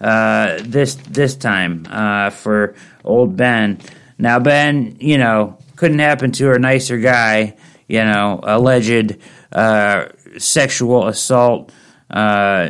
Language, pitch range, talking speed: English, 115-145 Hz, 120 wpm